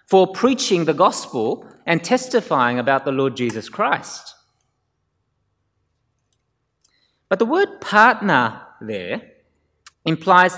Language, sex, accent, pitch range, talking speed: English, male, Australian, 120-155 Hz, 95 wpm